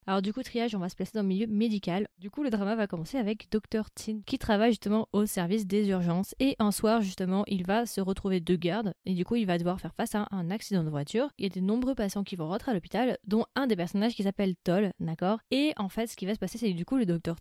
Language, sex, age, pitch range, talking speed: French, female, 20-39, 180-220 Hz, 290 wpm